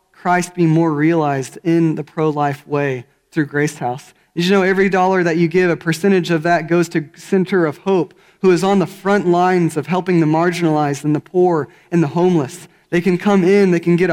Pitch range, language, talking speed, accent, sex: 150-180 Hz, English, 215 wpm, American, male